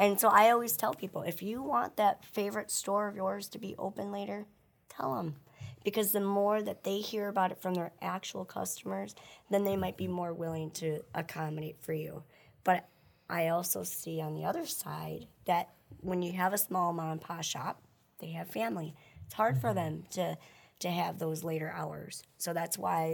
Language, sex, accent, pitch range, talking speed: English, male, American, 160-195 Hz, 195 wpm